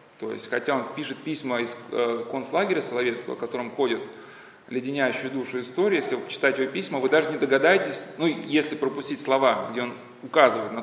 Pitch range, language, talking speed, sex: 125-170 Hz, Russian, 170 wpm, male